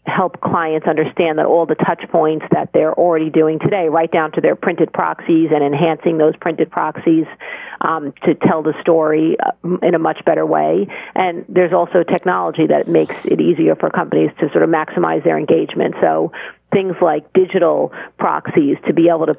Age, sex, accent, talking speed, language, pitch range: 40-59, female, American, 185 wpm, English, 155-180 Hz